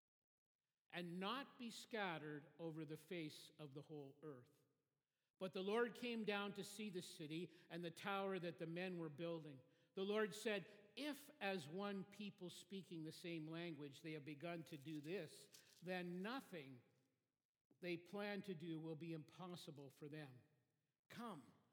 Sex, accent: male, American